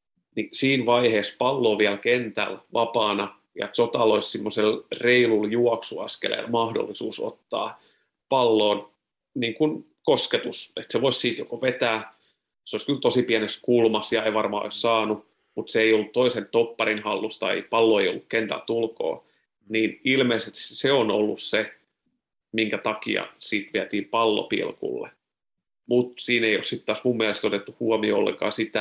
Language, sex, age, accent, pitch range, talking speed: Finnish, male, 30-49, native, 110-120 Hz, 145 wpm